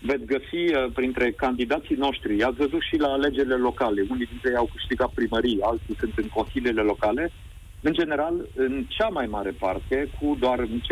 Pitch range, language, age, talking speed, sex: 120-150 Hz, Romanian, 40-59, 175 wpm, male